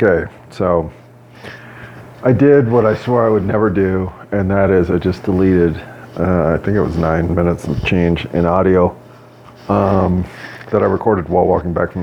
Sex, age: male, 40-59